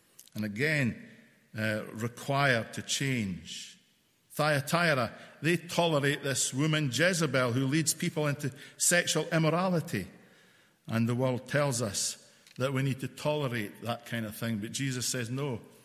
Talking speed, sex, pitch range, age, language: 135 wpm, male, 120-150 Hz, 50-69, English